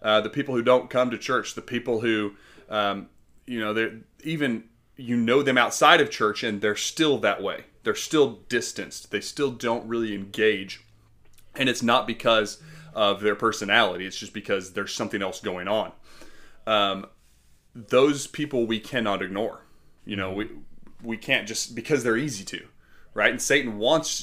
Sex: male